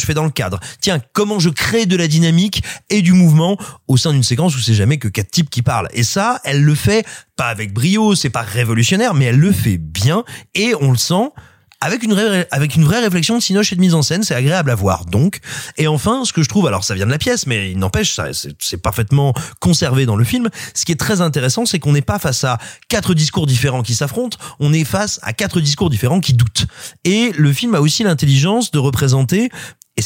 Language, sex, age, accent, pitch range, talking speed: French, male, 30-49, French, 120-175 Hz, 245 wpm